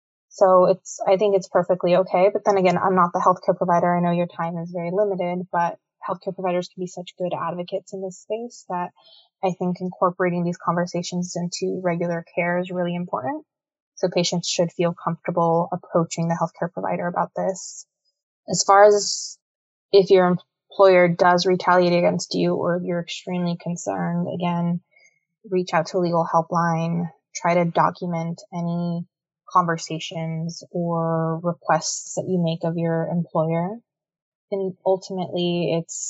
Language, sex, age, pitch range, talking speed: English, female, 20-39, 170-190 Hz, 155 wpm